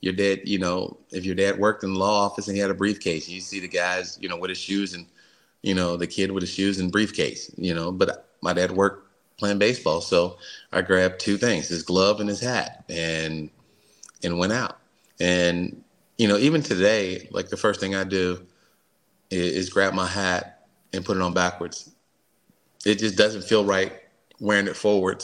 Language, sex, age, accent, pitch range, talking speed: English, male, 30-49, American, 90-100 Hz, 205 wpm